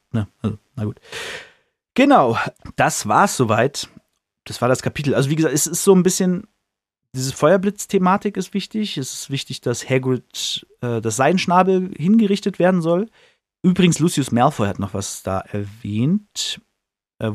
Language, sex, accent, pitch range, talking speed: German, male, German, 110-160 Hz, 150 wpm